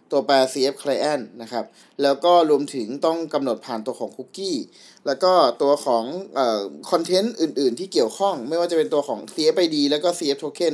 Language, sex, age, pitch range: Thai, male, 20-39, 130-175 Hz